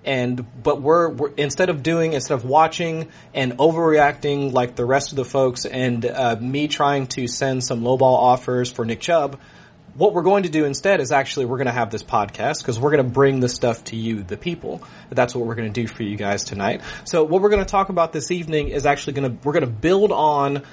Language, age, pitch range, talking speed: English, 30-49, 125-155 Hz, 240 wpm